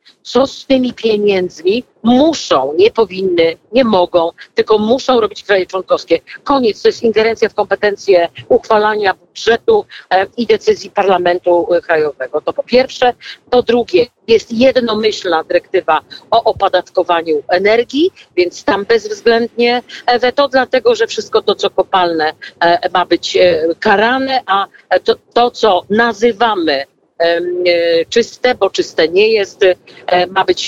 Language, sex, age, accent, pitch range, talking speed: Polish, female, 50-69, native, 185-245 Hz, 125 wpm